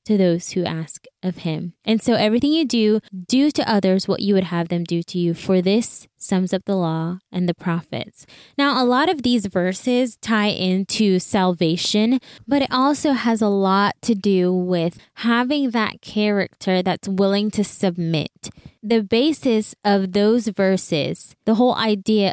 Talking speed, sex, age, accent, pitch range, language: 170 wpm, female, 20-39, American, 180-225 Hz, English